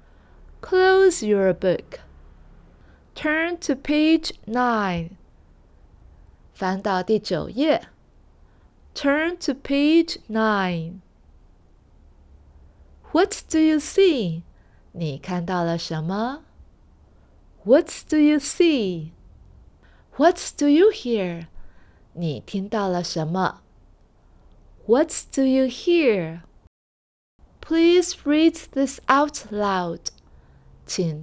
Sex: female